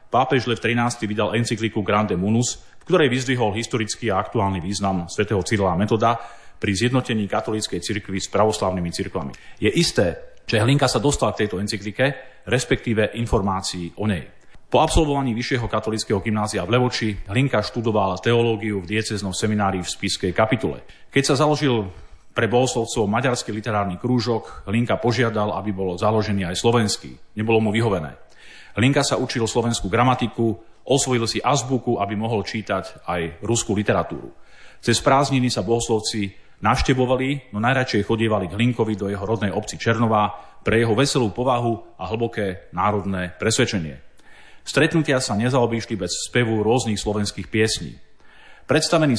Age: 30-49